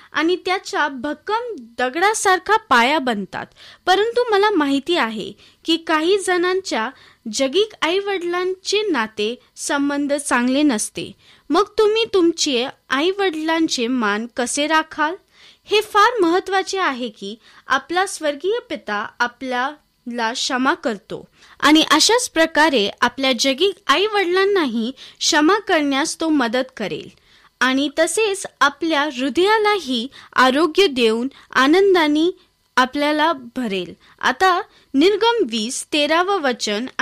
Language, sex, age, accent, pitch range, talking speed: Marathi, female, 20-39, native, 260-375 Hz, 90 wpm